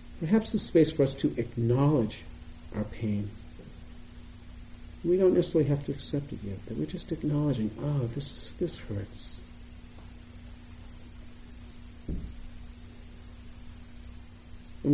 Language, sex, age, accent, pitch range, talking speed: English, male, 50-69, American, 80-135 Hz, 105 wpm